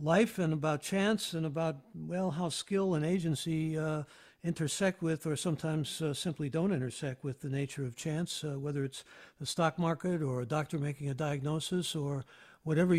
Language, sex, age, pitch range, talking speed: English, male, 60-79, 145-180 Hz, 180 wpm